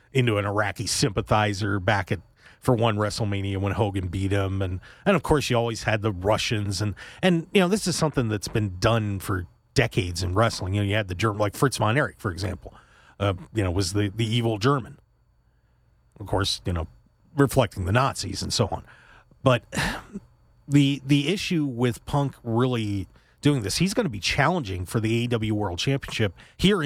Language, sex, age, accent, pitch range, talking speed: English, male, 40-59, American, 105-135 Hz, 190 wpm